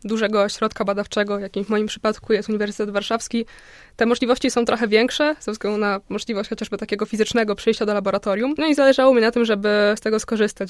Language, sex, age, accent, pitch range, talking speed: Polish, female, 20-39, native, 205-235 Hz, 195 wpm